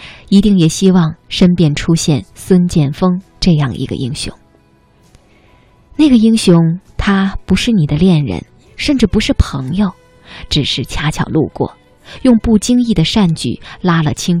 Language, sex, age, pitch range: Chinese, female, 20-39, 140-190 Hz